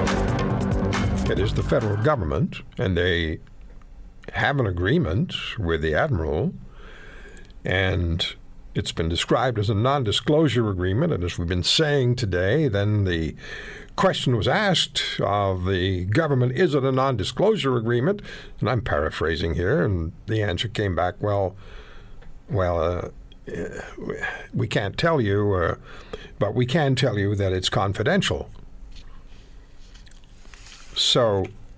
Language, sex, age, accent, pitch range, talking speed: English, male, 60-79, American, 95-140 Hz, 125 wpm